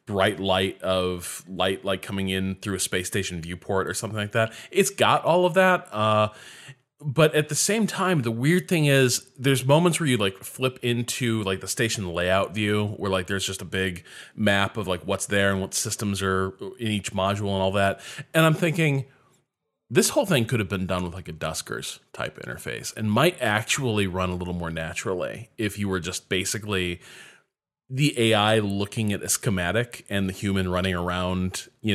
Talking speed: 195 wpm